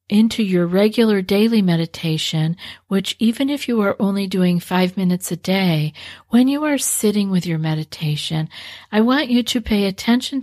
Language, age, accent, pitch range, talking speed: English, 50-69, American, 165-205 Hz, 165 wpm